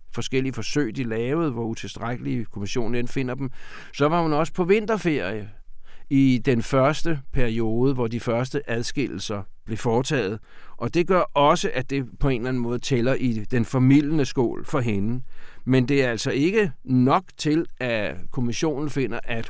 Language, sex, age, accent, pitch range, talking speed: Danish, male, 60-79, native, 115-150 Hz, 165 wpm